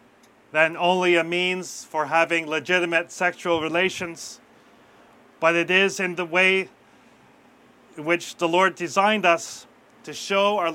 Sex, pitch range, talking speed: male, 165-200 Hz, 135 wpm